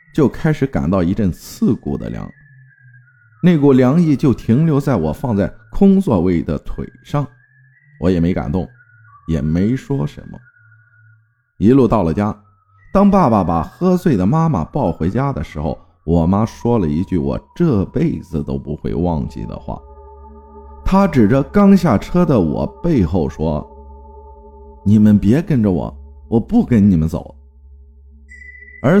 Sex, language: male, Chinese